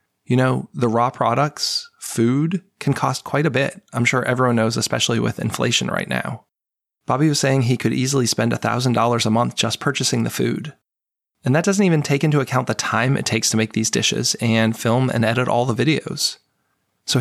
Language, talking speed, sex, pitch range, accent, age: English, 200 wpm, male, 115-140 Hz, American, 20-39